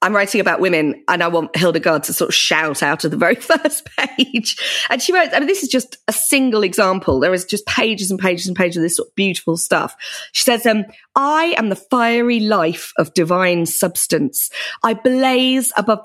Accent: British